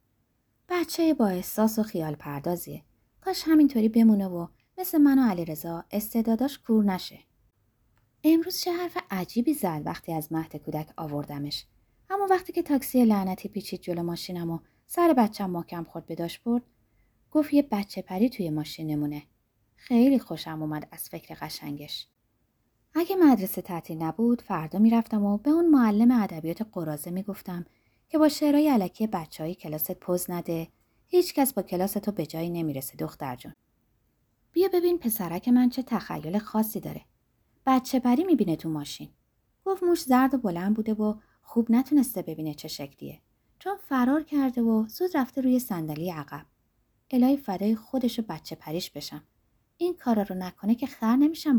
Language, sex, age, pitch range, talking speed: Persian, female, 20-39, 165-260 Hz, 155 wpm